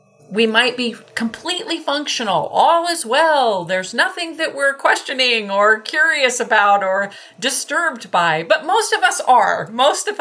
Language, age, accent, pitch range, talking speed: English, 40-59, American, 205-295 Hz, 155 wpm